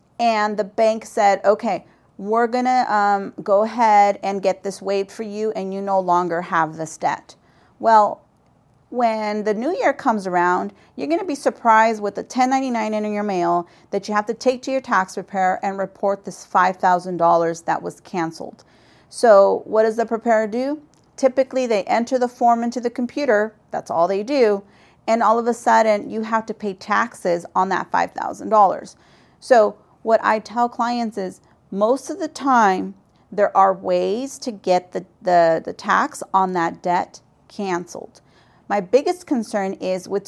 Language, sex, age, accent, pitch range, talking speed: English, female, 40-59, American, 190-240 Hz, 175 wpm